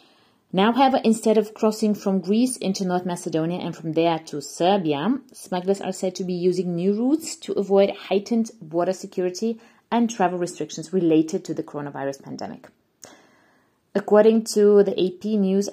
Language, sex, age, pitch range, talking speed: English, female, 30-49, 180-220 Hz, 155 wpm